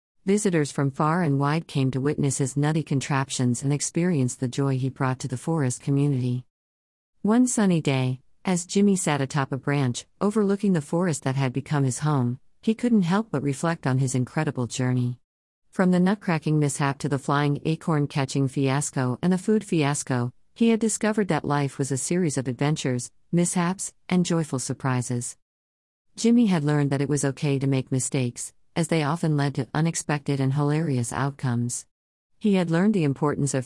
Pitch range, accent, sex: 130-170 Hz, American, female